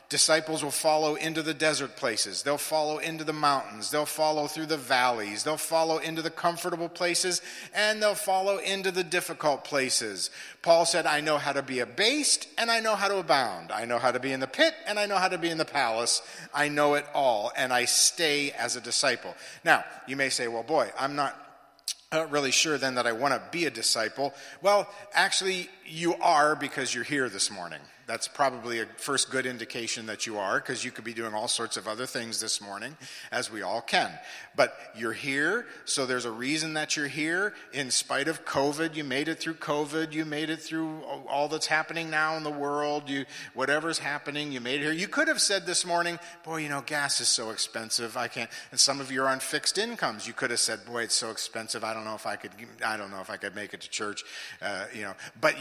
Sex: male